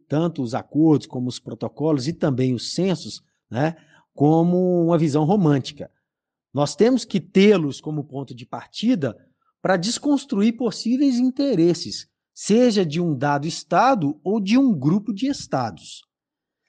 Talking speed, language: 135 wpm, Portuguese